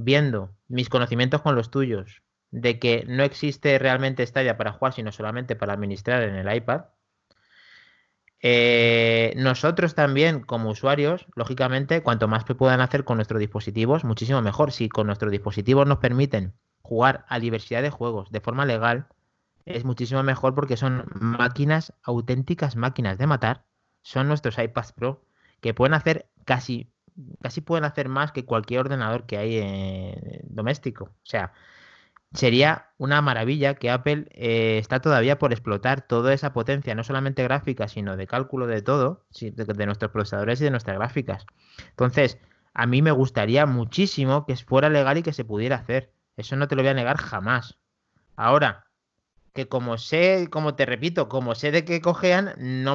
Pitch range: 115-140 Hz